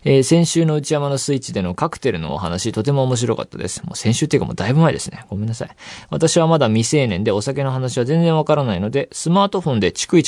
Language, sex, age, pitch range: Japanese, male, 20-39, 110-155 Hz